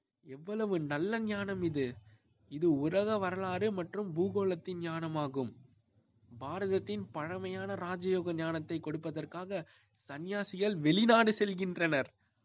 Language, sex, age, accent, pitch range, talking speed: Tamil, male, 20-39, native, 130-180 Hz, 85 wpm